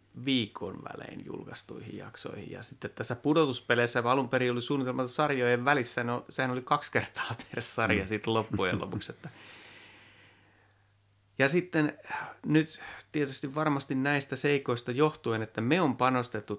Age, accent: 30-49, native